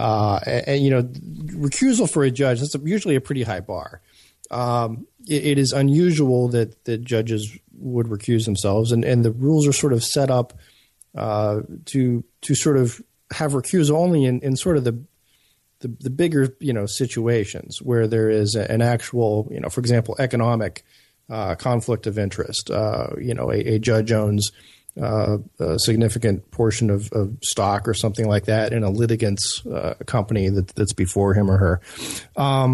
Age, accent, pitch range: 40-59, American, 105-130 Hz